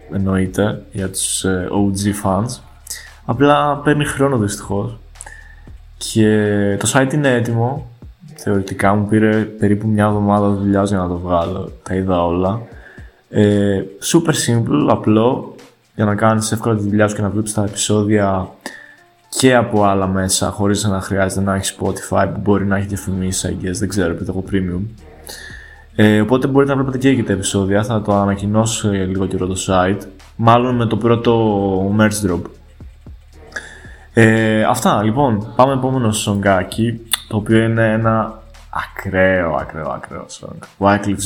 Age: 20-39